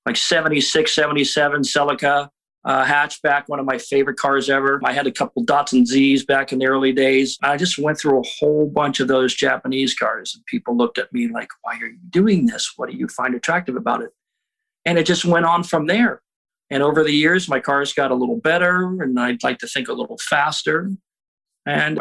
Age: 40-59